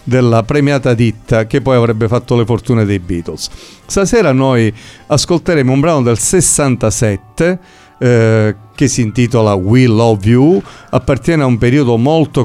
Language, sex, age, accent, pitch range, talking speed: Italian, male, 50-69, native, 110-135 Hz, 145 wpm